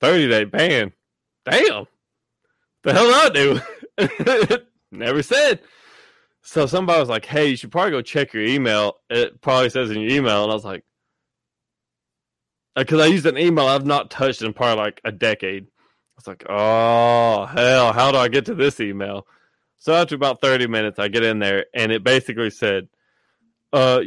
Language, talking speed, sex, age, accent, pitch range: English, 180 wpm, male, 20-39, American, 110-140 Hz